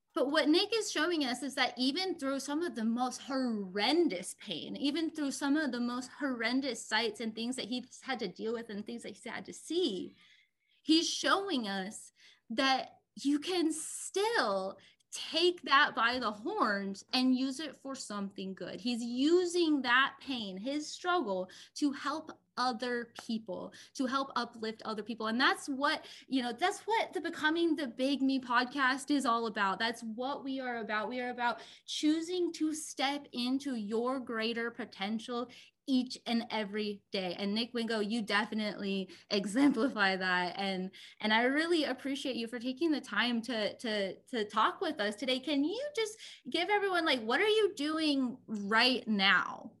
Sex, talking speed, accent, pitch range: female, 170 wpm, American, 225-300 Hz